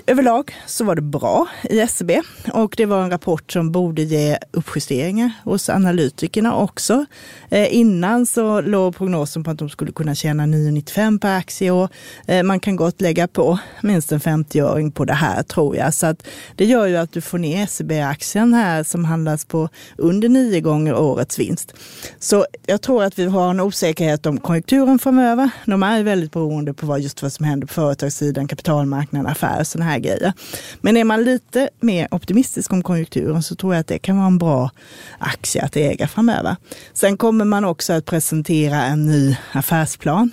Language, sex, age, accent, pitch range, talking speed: Swedish, female, 30-49, native, 155-210 Hz, 185 wpm